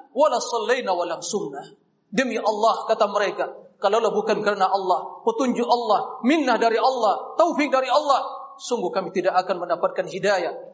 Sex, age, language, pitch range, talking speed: male, 40-59, Indonesian, 200-295 Hz, 125 wpm